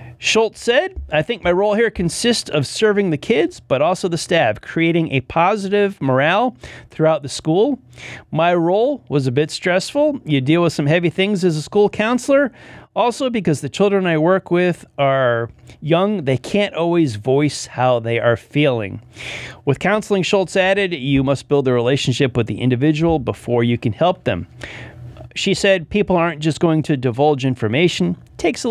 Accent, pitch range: American, 125-180 Hz